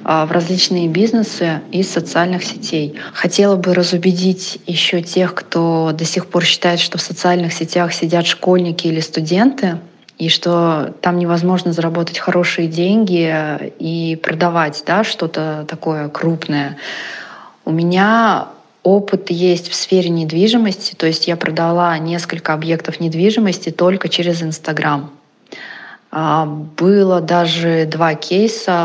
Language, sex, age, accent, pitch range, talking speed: Russian, female, 20-39, native, 165-185 Hz, 120 wpm